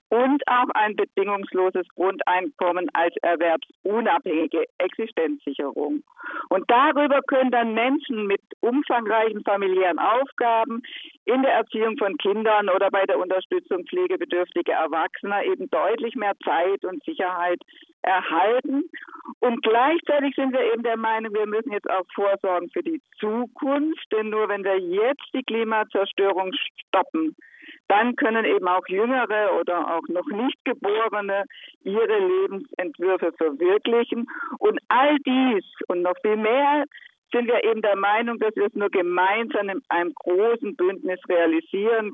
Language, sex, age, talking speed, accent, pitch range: German, female, 50-69, 130 wpm, German, 190-280 Hz